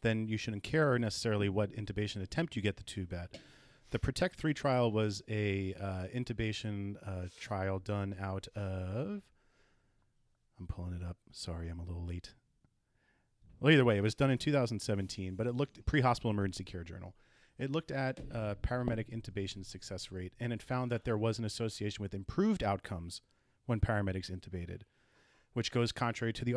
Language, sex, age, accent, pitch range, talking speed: English, male, 30-49, American, 100-125 Hz, 170 wpm